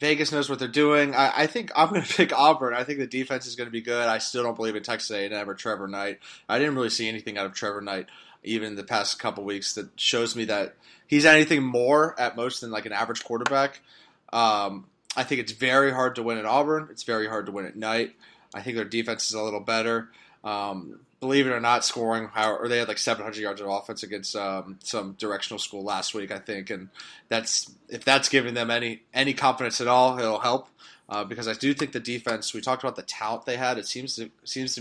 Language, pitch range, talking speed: English, 105-130 Hz, 245 wpm